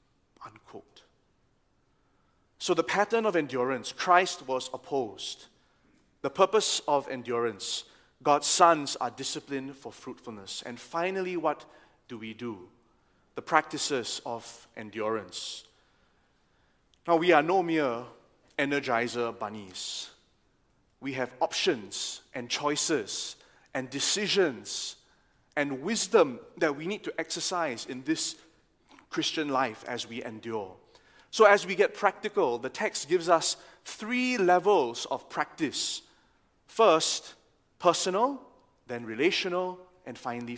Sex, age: male, 30-49